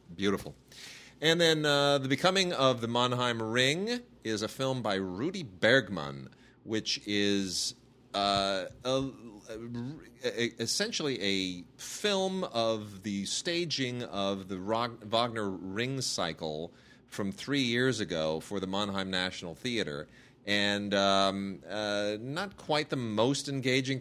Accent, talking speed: American, 115 wpm